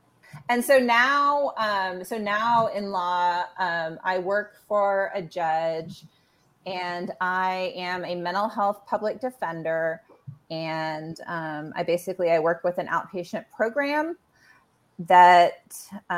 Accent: American